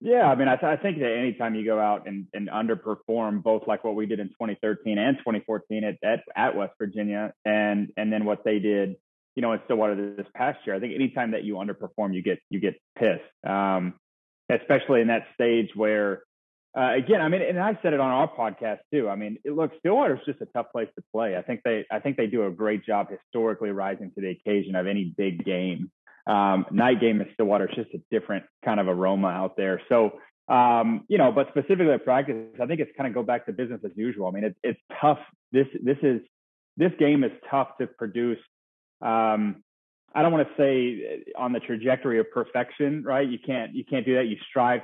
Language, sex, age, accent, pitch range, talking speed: English, male, 30-49, American, 105-130 Hz, 230 wpm